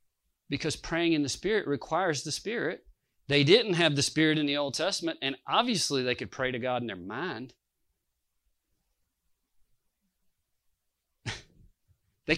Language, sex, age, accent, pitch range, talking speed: English, male, 40-59, American, 130-175 Hz, 135 wpm